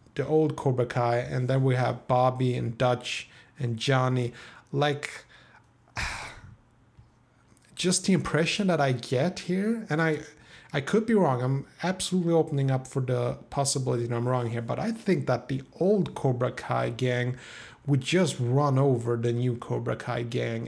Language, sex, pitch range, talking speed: English, male, 120-155 Hz, 165 wpm